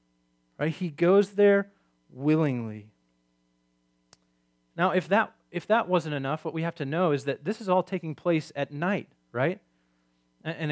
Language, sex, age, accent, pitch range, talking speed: English, male, 30-49, American, 140-200 Hz, 145 wpm